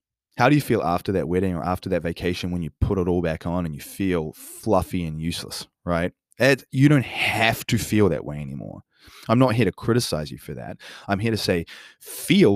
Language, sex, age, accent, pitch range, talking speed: English, male, 20-39, Australian, 85-110 Hz, 225 wpm